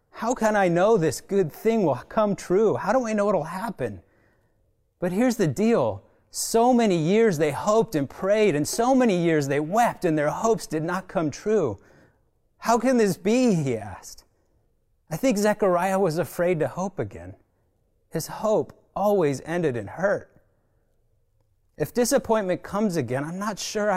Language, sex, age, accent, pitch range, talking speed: English, male, 30-49, American, 110-180 Hz, 170 wpm